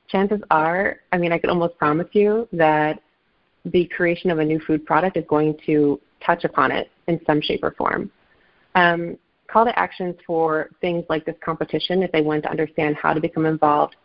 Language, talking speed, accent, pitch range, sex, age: English, 195 wpm, American, 155-195 Hz, female, 30-49